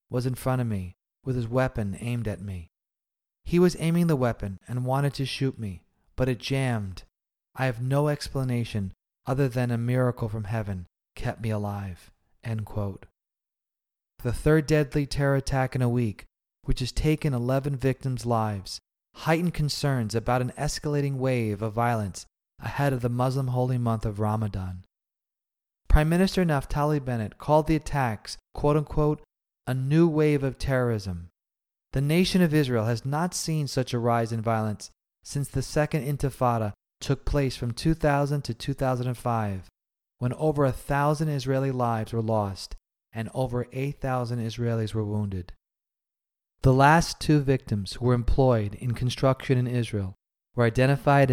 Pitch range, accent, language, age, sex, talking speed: 110-140 Hz, American, English, 30-49, male, 155 wpm